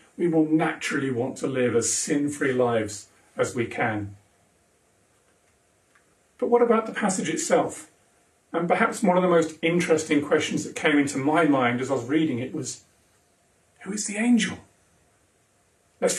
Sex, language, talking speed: male, English, 155 wpm